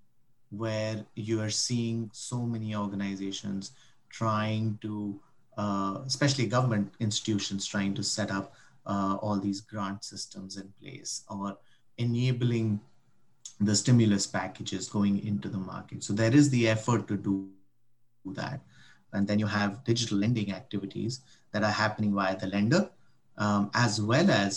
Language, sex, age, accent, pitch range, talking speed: English, male, 30-49, Indian, 100-115 Hz, 140 wpm